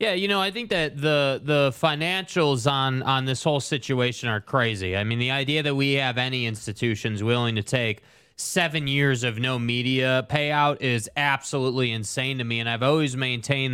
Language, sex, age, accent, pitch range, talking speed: English, male, 20-39, American, 130-155 Hz, 190 wpm